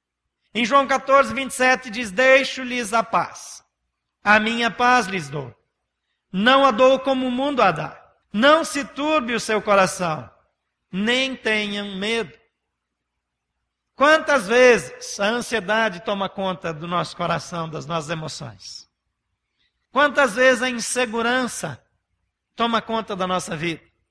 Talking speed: 125 wpm